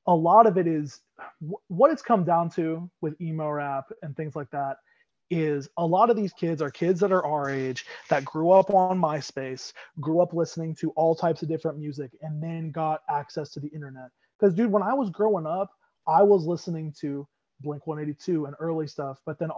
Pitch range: 145-170 Hz